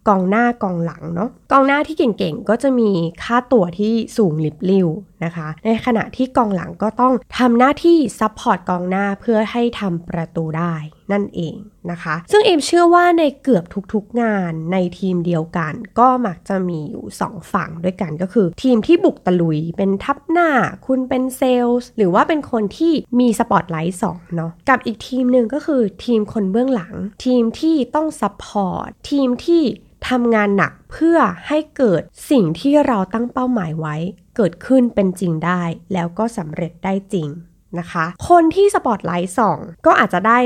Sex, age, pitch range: female, 20-39, 180-255 Hz